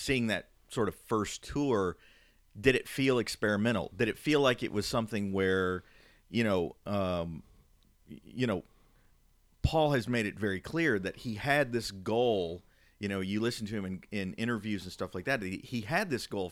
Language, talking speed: English, 185 wpm